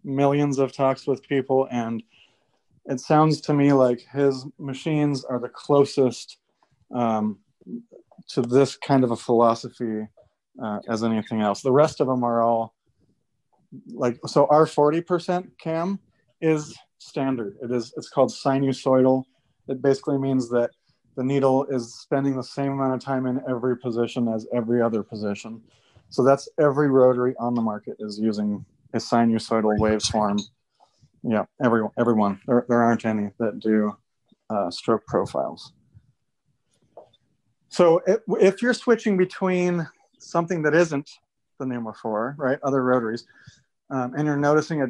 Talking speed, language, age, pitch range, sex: 145 wpm, English, 30-49, 120-140 Hz, male